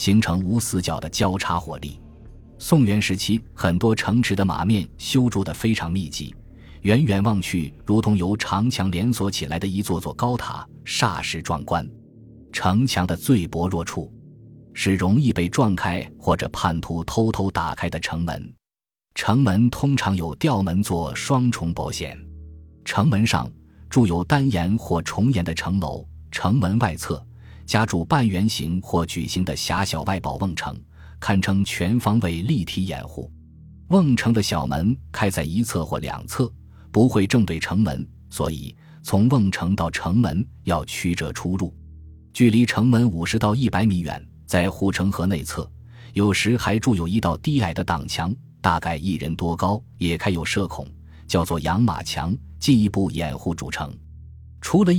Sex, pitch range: male, 85-110 Hz